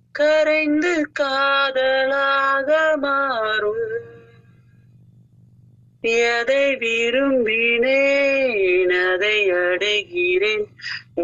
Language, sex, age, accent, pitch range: Tamil, male, 30-49, native, 155-225 Hz